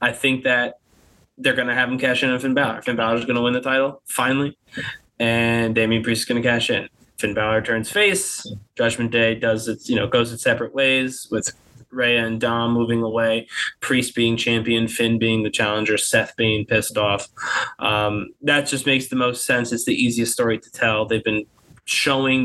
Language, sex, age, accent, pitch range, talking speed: English, male, 20-39, American, 115-125 Hz, 205 wpm